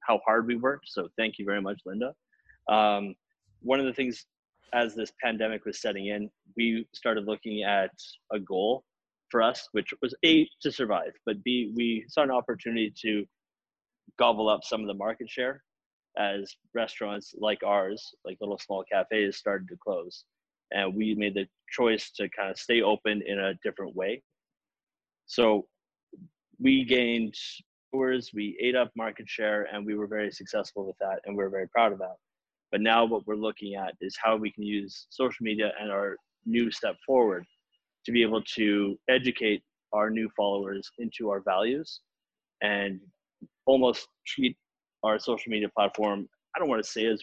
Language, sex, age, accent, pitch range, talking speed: English, male, 30-49, American, 100-120 Hz, 175 wpm